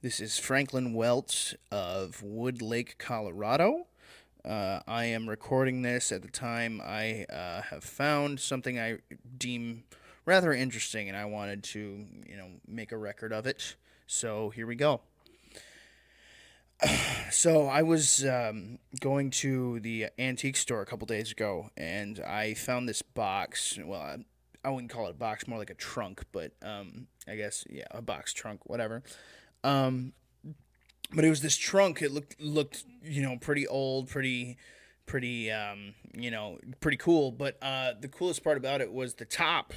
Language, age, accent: English, 20-39, American